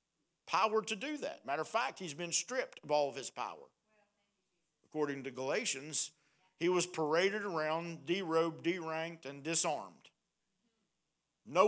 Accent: American